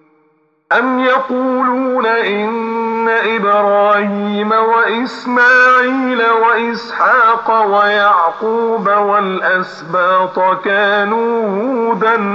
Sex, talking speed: male, 50 wpm